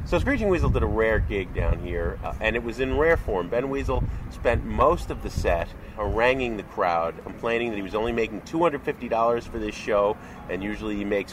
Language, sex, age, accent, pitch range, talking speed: English, male, 30-49, American, 95-130 Hz, 210 wpm